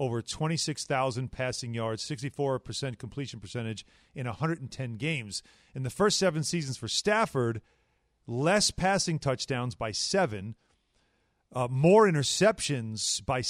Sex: male